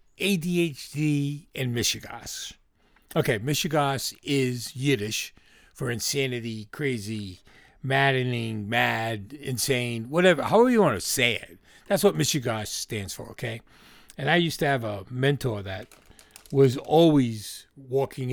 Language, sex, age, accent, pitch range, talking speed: English, male, 50-69, American, 110-160 Hz, 120 wpm